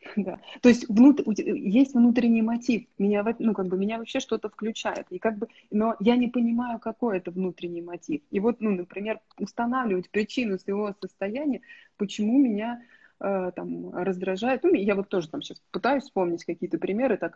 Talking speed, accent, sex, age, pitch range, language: 150 wpm, native, female, 20-39, 185-245 Hz, Russian